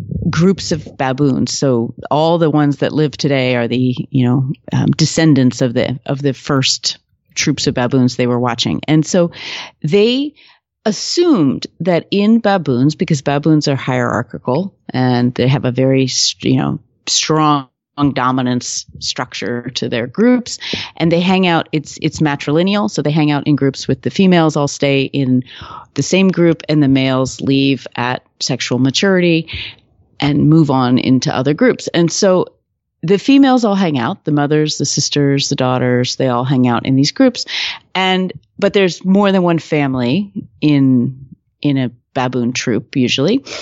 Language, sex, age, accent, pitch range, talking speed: English, female, 40-59, American, 130-180 Hz, 165 wpm